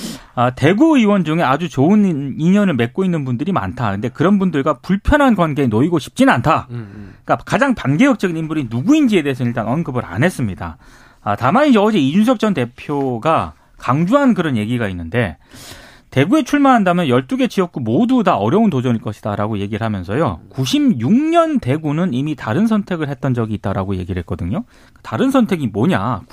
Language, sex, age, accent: Korean, male, 40-59, native